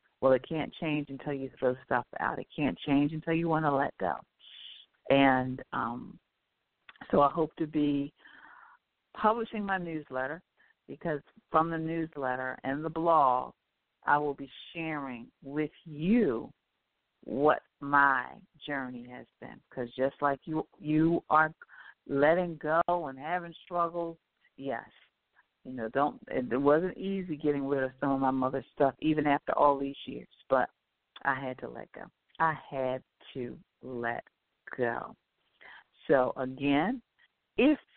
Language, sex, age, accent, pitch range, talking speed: English, female, 50-69, American, 135-160 Hz, 140 wpm